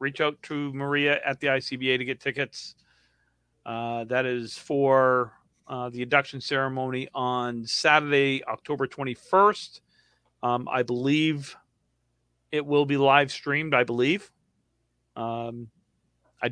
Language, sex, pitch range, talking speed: English, male, 120-155 Hz, 125 wpm